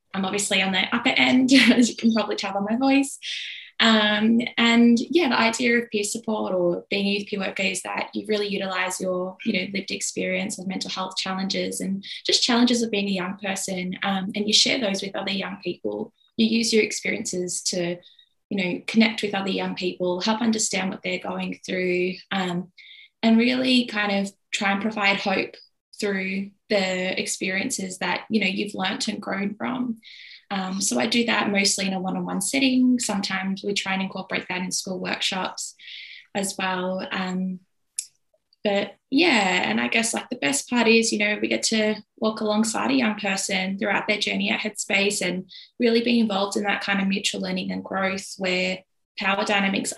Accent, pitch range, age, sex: Australian, 190-220 Hz, 10-29, female